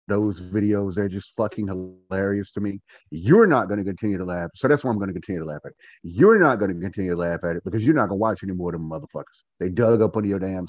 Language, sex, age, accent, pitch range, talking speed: English, male, 30-49, American, 100-155 Hz, 285 wpm